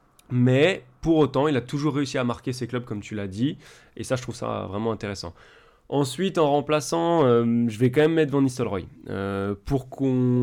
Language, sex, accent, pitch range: French, male, French, 115-140 Hz